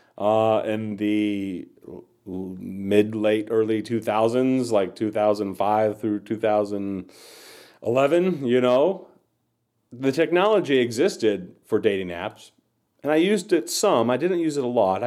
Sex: male